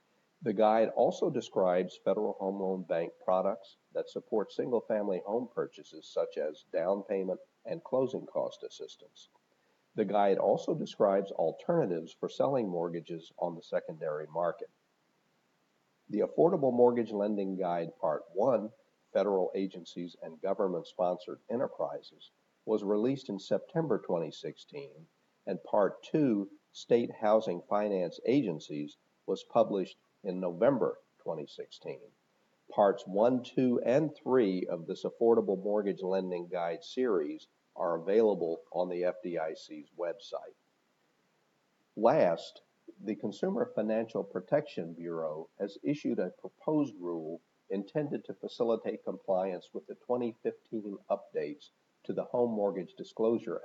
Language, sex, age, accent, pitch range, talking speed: English, male, 50-69, American, 90-155 Hz, 115 wpm